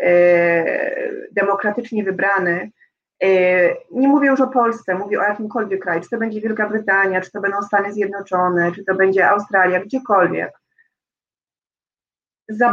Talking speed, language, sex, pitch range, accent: 125 wpm, Polish, female, 195-240 Hz, native